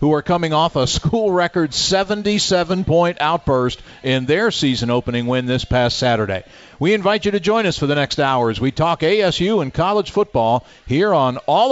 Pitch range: 130-175 Hz